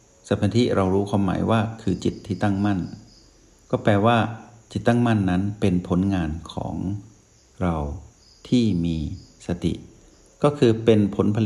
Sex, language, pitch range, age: male, Thai, 90-110 Hz, 60-79